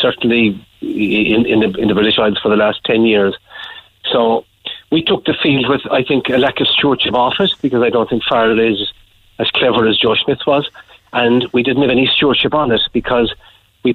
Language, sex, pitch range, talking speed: English, male, 110-130 Hz, 200 wpm